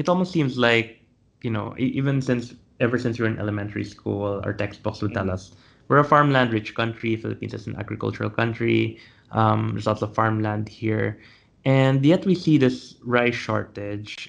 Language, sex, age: English, male, 20-39